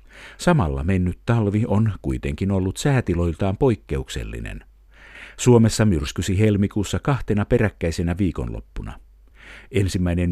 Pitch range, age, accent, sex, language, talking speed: 80-110 Hz, 50-69, native, male, Finnish, 85 wpm